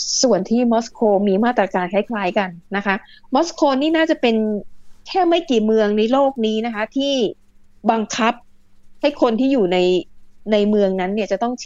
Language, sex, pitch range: Thai, female, 195-245 Hz